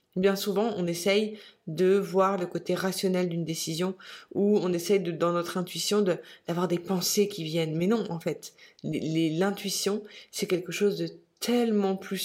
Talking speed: 180 wpm